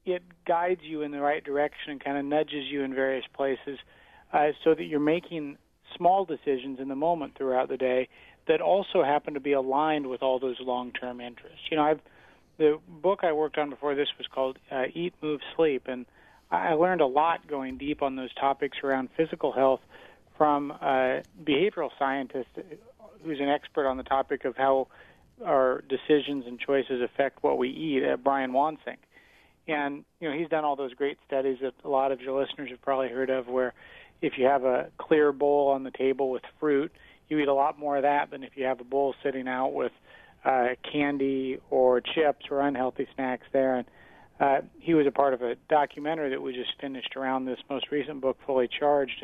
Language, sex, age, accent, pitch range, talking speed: English, male, 40-59, American, 130-150 Hz, 200 wpm